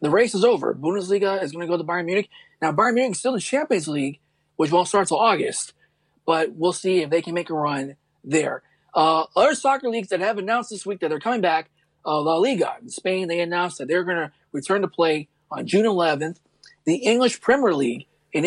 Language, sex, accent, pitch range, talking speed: English, male, American, 155-210 Hz, 225 wpm